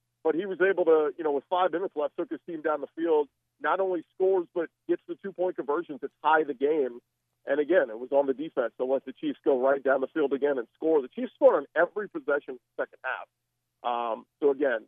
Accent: American